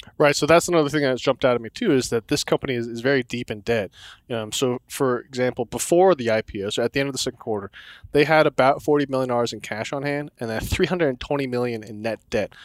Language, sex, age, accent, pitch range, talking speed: English, male, 20-39, American, 115-140 Hz, 245 wpm